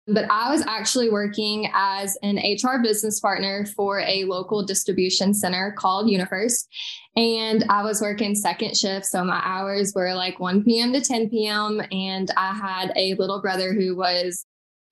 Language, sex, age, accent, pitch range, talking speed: English, female, 10-29, American, 195-225 Hz, 170 wpm